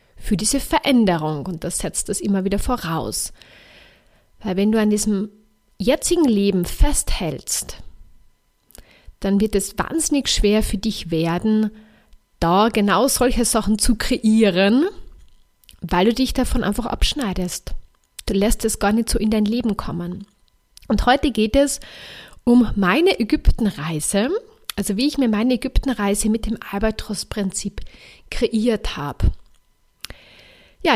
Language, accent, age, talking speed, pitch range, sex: German, German, 30-49, 130 wpm, 200-240 Hz, female